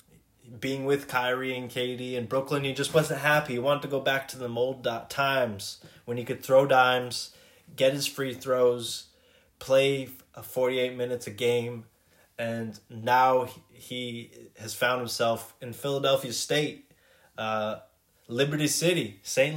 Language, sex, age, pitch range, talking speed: English, male, 20-39, 120-145 Hz, 145 wpm